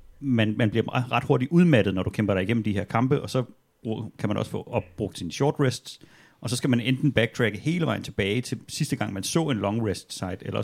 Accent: native